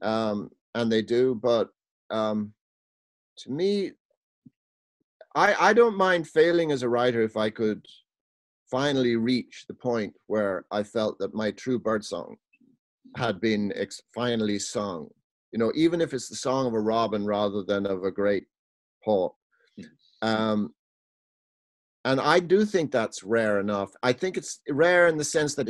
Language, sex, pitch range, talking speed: English, male, 110-160 Hz, 160 wpm